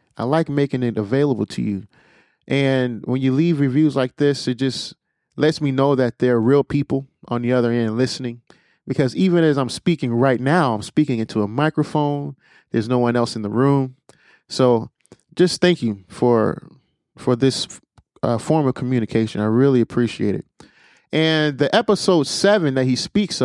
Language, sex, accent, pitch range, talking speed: English, male, American, 120-150 Hz, 180 wpm